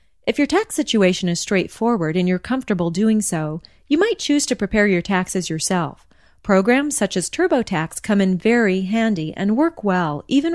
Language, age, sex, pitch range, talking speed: English, 30-49, female, 175-240 Hz, 175 wpm